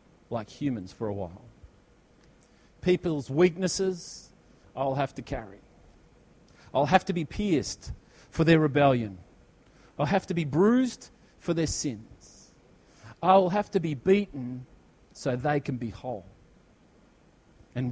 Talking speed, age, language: 125 wpm, 40-59, English